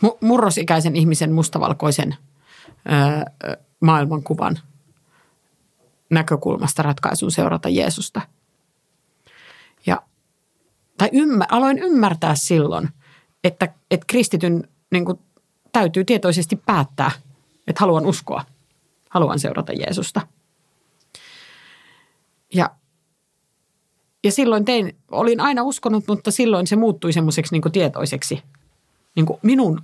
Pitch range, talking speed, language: 155-200 Hz, 90 wpm, Finnish